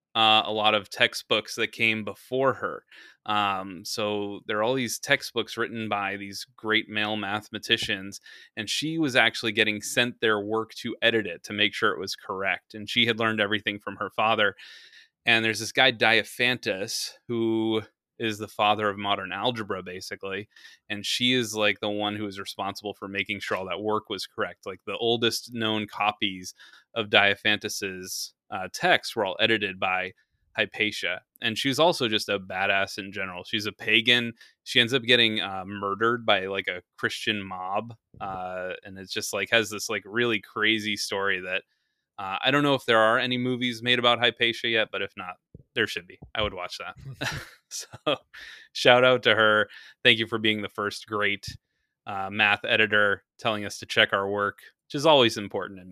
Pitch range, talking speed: 100-115 Hz, 185 wpm